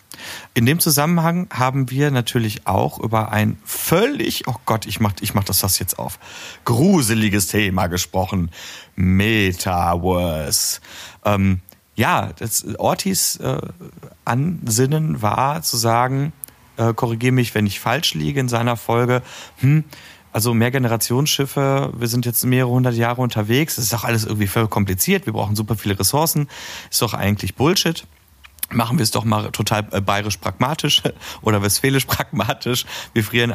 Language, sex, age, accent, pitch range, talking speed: German, male, 40-59, German, 100-125 Hz, 145 wpm